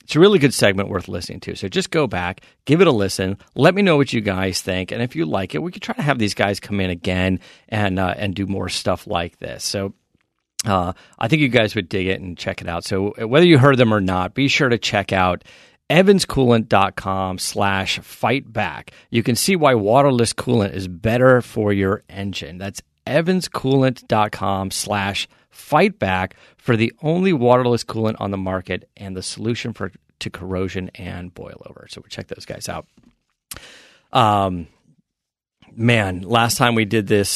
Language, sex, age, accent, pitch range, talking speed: English, male, 40-59, American, 95-120 Hz, 195 wpm